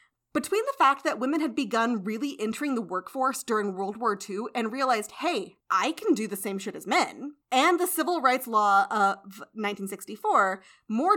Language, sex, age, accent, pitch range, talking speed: English, female, 30-49, American, 200-300 Hz, 185 wpm